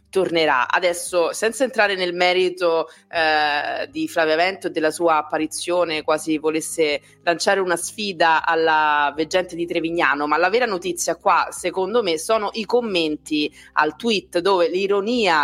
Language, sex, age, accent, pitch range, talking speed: Italian, female, 30-49, native, 160-195 Hz, 145 wpm